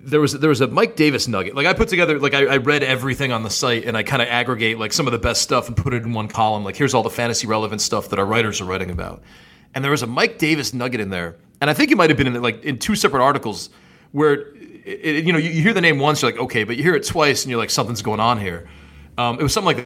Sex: male